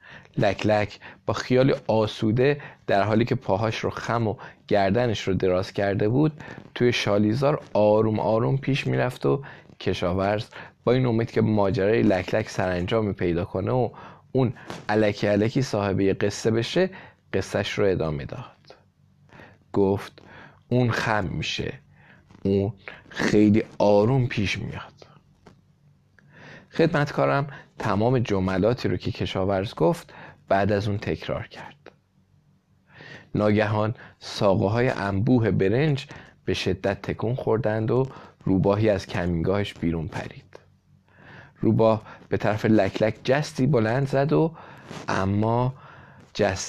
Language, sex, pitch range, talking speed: Persian, male, 100-125 Hz, 120 wpm